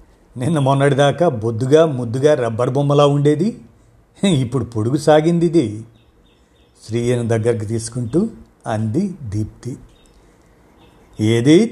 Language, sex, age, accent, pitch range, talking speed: Telugu, male, 50-69, native, 115-160 Hz, 80 wpm